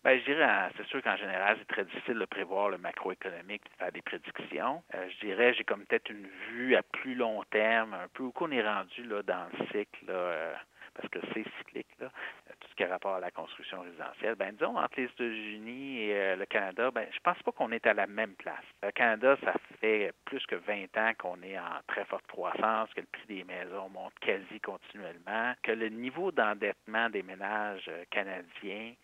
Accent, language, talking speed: Canadian, French, 210 wpm